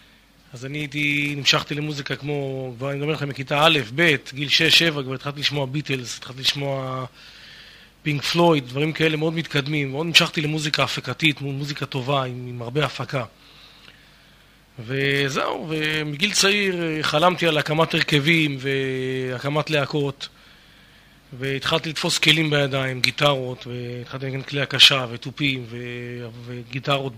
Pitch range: 130-150 Hz